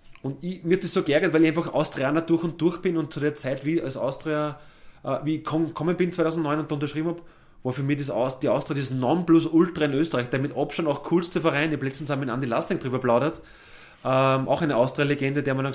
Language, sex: German, male